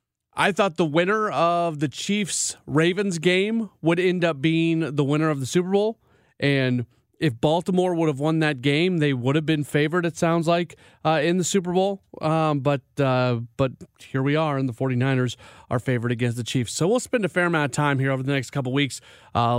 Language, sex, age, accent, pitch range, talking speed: English, male, 30-49, American, 135-180 Hz, 215 wpm